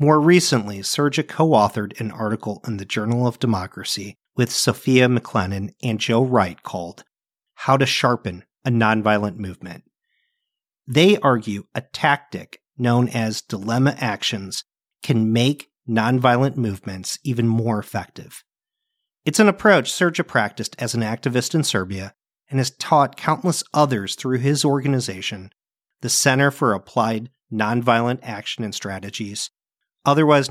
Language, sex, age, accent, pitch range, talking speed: English, male, 40-59, American, 110-150 Hz, 130 wpm